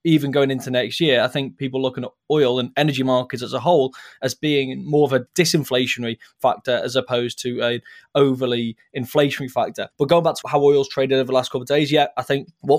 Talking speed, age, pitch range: 225 wpm, 20-39, 130-150 Hz